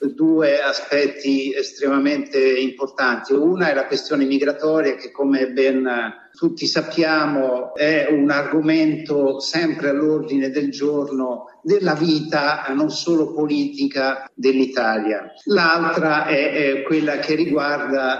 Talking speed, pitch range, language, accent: 105 wpm, 135-165 Hz, Italian, native